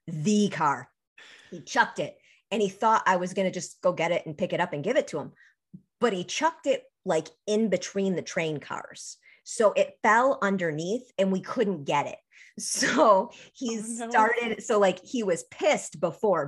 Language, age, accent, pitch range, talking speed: English, 30-49, American, 195-255 Hz, 195 wpm